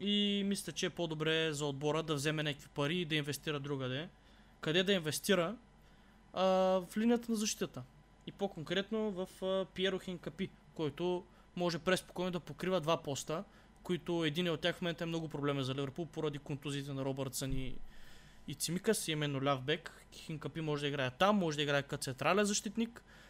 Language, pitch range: Bulgarian, 150-195 Hz